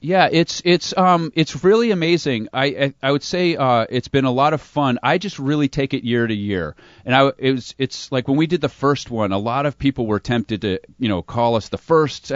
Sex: male